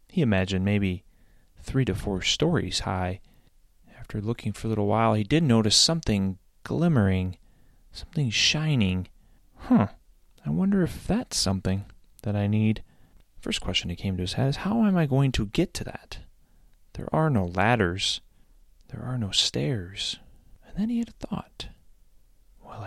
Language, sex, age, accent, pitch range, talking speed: English, male, 30-49, American, 90-120 Hz, 165 wpm